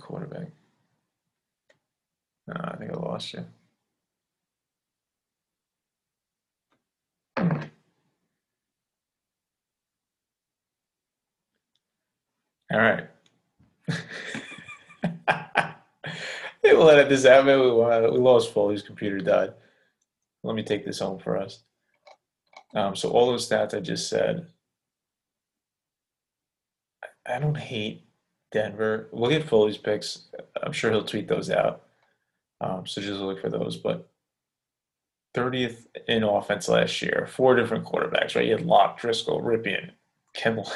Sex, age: male, 30-49